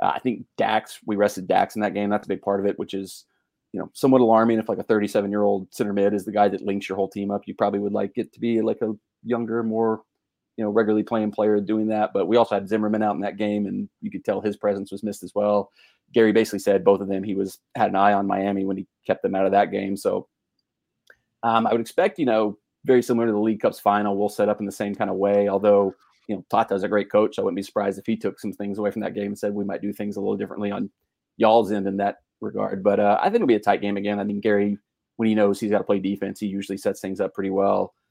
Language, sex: English, male